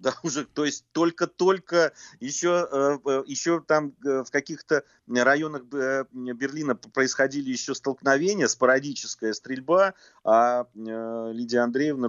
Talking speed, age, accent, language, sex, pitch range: 100 wpm, 30-49, native, Russian, male, 110-145 Hz